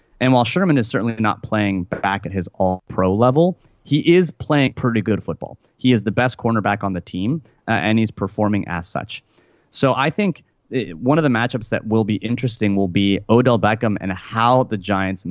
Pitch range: 100-120 Hz